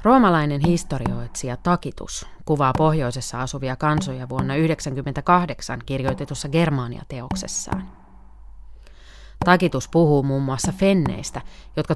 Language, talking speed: Finnish, 85 wpm